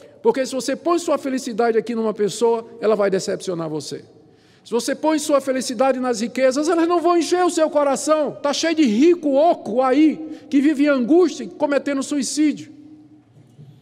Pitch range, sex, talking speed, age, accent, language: 155-260 Hz, male, 170 wpm, 50-69, Brazilian, Portuguese